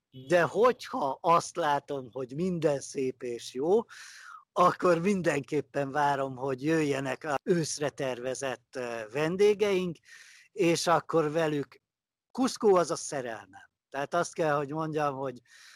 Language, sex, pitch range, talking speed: Hungarian, male, 125-170 Hz, 120 wpm